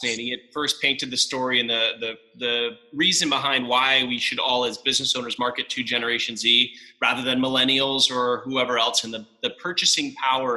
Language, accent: English, American